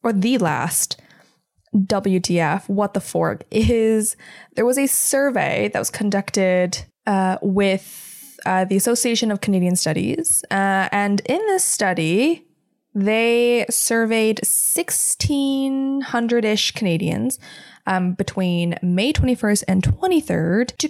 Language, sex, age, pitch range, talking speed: English, female, 20-39, 190-270 Hz, 110 wpm